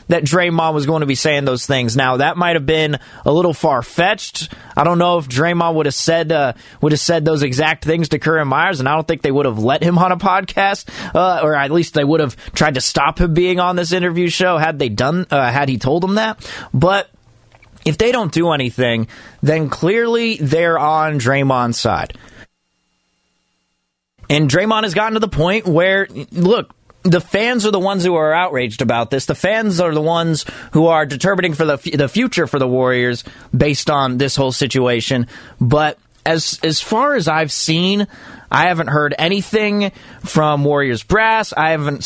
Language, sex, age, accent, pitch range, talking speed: English, male, 20-39, American, 135-175 Hz, 200 wpm